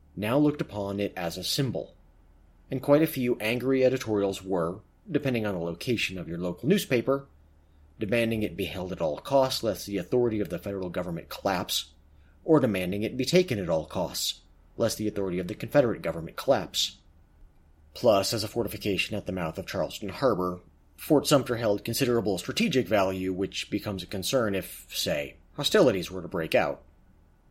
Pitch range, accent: 80-120 Hz, American